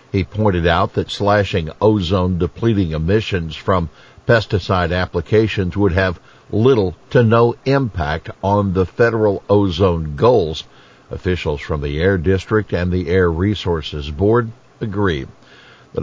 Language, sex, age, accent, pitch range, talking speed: English, male, 60-79, American, 85-110 Hz, 125 wpm